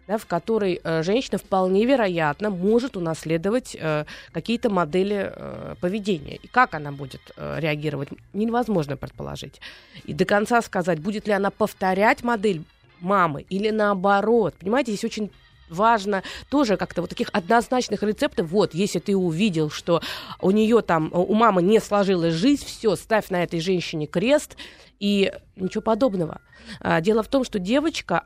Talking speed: 145 wpm